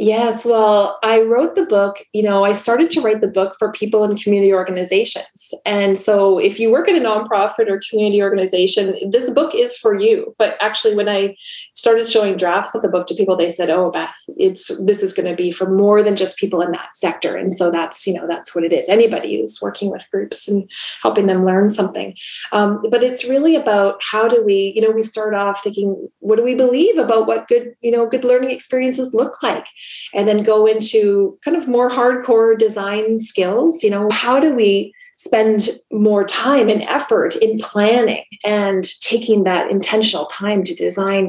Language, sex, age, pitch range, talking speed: English, female, 20-39, 195-235 Hz, 205 wpm